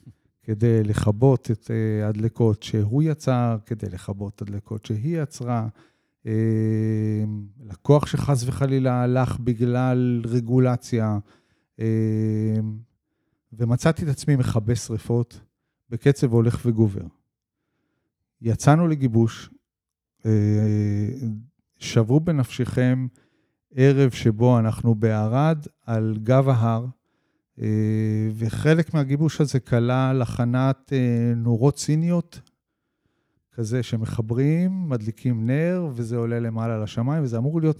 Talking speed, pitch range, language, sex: 85 wpm, 110-130 Hz, Hebrew, male